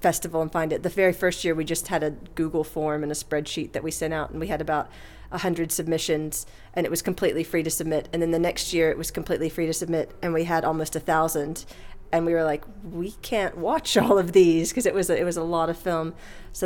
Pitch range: 155-180 Hz